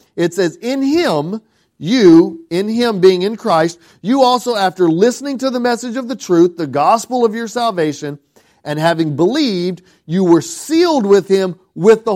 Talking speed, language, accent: 175 wpm, English, American